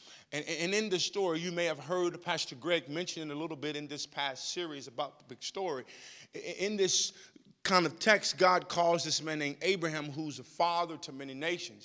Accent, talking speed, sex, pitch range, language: American, 200 wpm, male, 150-195 Hz, English